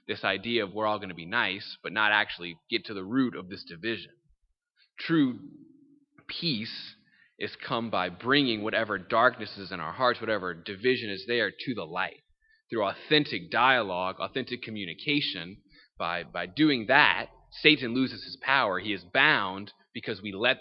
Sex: male